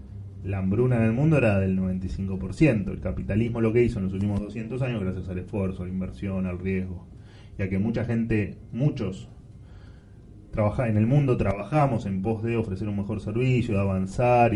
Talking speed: 180 wpm